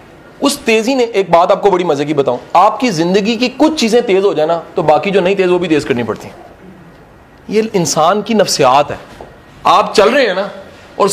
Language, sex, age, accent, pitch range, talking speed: English, male, 40-59, Indian, 160-235 Hz, 215 wpm